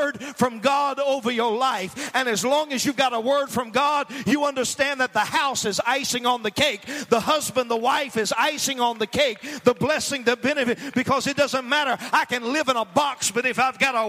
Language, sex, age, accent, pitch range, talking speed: English, male, 40-59, American, 245-290 Hz, 225 wpm